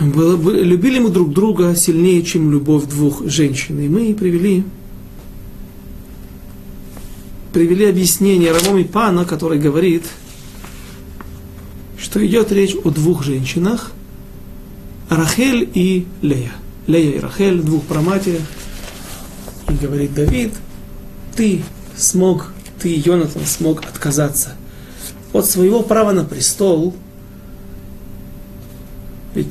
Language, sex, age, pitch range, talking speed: Russian, male, 40-59, 150-185 Hz, 100 wpm